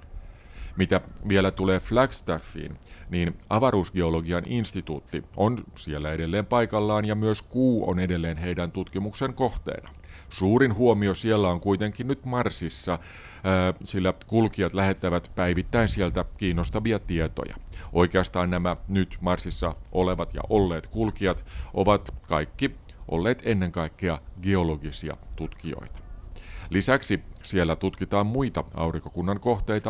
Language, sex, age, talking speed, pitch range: Finnish, male, 50-69, 110 wpm, 85-110 Hz